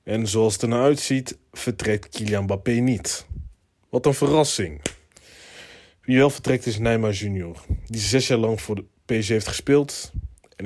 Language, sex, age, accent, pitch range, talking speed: Dutch, male, 20-39, Dutch, 95-120 Hz, 160 wpm